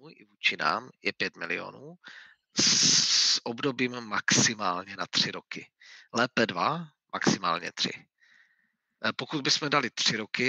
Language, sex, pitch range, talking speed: Czech, male, 115-130 Hz, 115 wpm